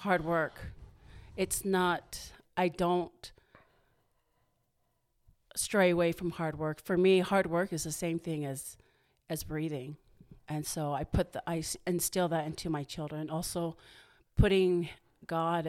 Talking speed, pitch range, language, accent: 140 wpm, 155-180 Hz, English, American